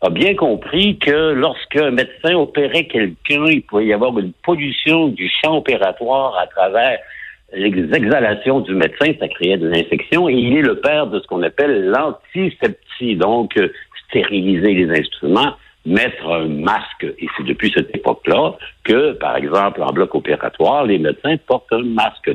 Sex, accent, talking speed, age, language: male, French, 160 wpm, 60-79, French